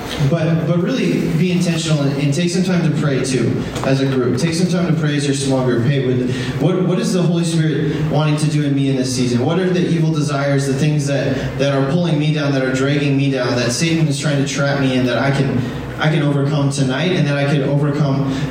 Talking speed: 255 wpm